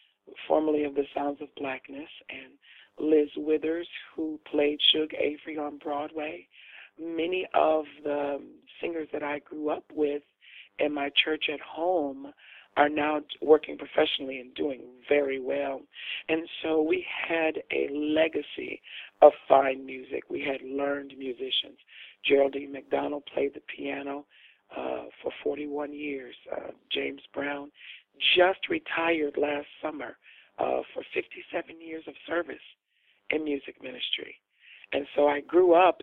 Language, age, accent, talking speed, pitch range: English, 40-59, American, 135 wpm, 140-155 Hz